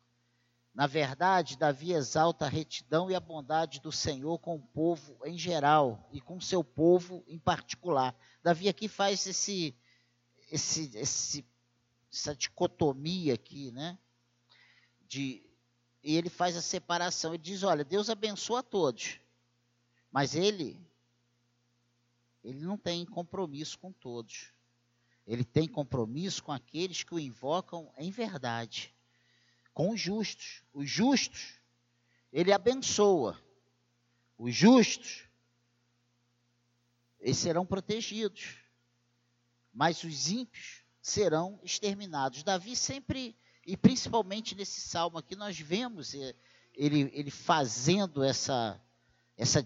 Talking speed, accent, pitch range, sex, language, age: 110 wpm, Brazilian, 120-180 Hz, male, Portuguese, 50-69